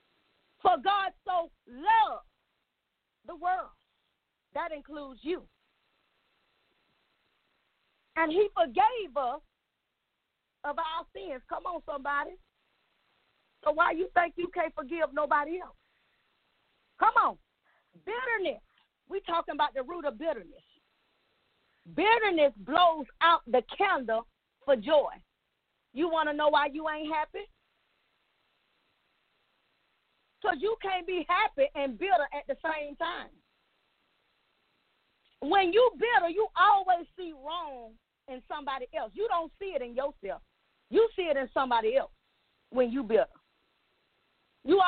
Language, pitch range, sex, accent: English, 290-375 Hz, female, American